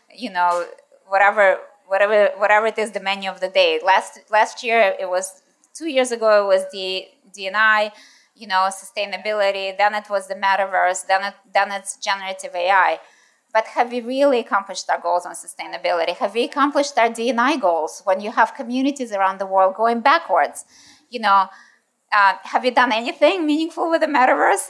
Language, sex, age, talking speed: English, female, 20-39, 175 wpm